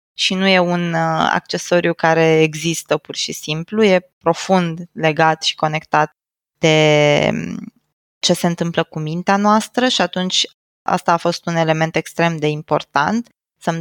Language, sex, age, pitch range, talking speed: Romanian, female, 20-39, 170-195 Hz, 145 wpm